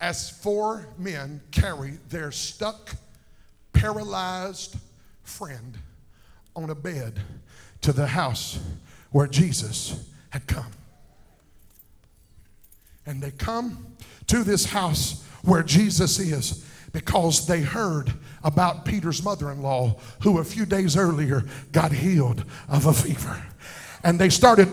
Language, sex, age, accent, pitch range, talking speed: English, male, 50-69, American, 155-235 Hz, 110 wpm